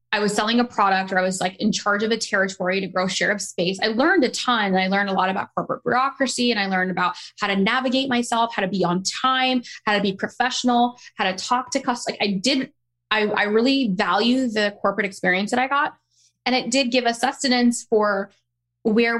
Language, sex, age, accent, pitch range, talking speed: English, female, 10-29, American, 195-240 Hz, 230 wpm